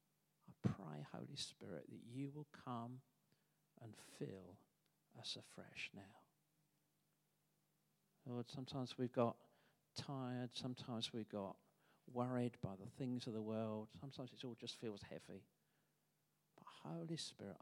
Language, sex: English, male